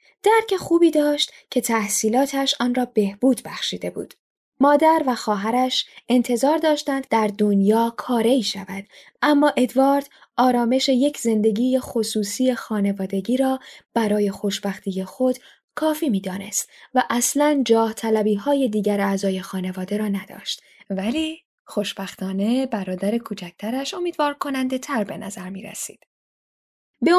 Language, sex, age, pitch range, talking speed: Persian, female, 10-29, 215-285 Hz, 120 wpm